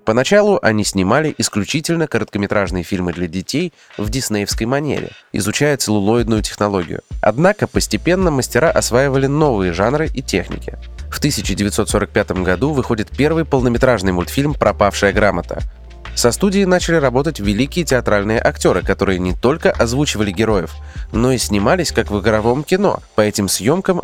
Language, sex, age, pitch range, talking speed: Russian, male, 20-39, 95-130 Hz, 130 wpm